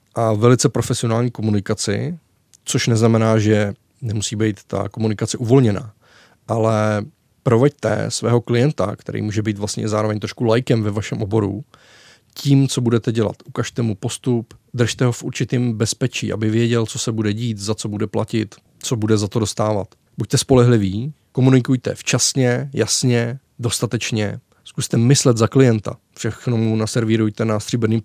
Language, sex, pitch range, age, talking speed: Czech, male, 110-125 Hz, 20-39, 145 wpm